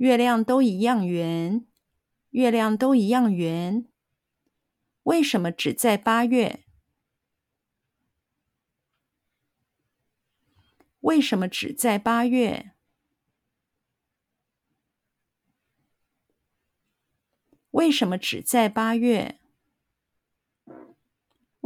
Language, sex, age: Chinese, female, 50-69